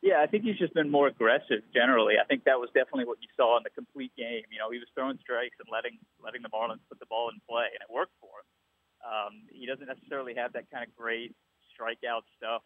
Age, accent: 30-49, American